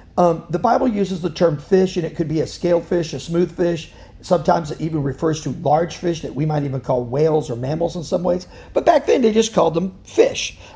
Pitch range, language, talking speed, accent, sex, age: 155-230 Hz, English, 240 wpm, American, male, 50-69